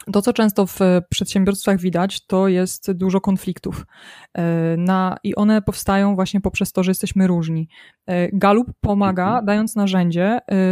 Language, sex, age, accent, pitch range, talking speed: Polish, female, 20-39, native, 190-220 Hz, 130 wpm